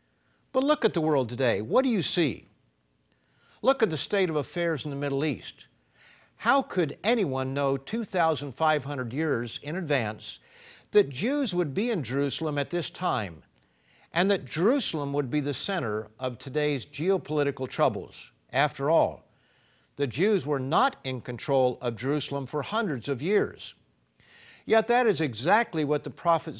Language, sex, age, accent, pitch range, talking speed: English, male, 50-69, American, 130-170 Hz, 155 wpm